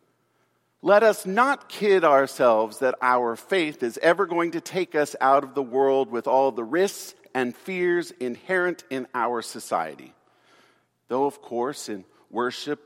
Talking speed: 155 wpm